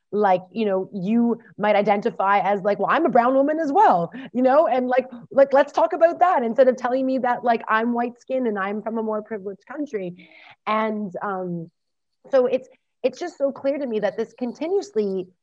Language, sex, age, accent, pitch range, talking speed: English, female, 30-49, American, 200-260 Hz, 205 wpm